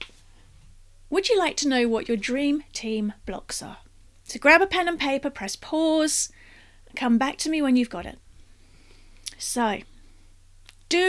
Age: 30-49